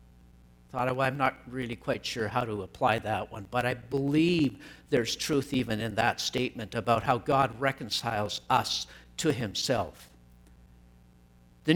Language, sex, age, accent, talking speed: English, male, 60-79, American, 140 wpm